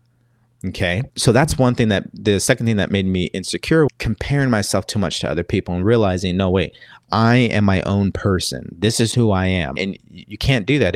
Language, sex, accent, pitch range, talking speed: English, male, American, 90-115 Hz, 215 wpm